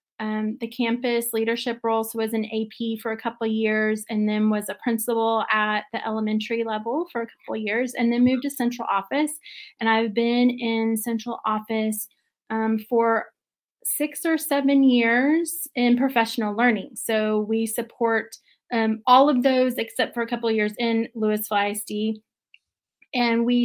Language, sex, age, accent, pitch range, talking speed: English, female, 30-49, American, 220-250 Hz, 170 wpm